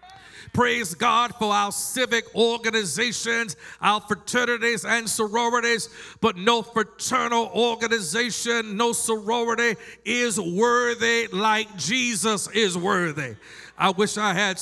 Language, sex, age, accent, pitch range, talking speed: English, male, 50-69, American, 215-250 Hz, 105 wpm